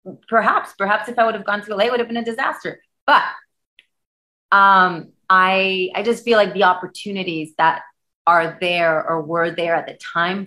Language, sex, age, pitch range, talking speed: English, female, 30-49, 160-190 Hz, 190 wpm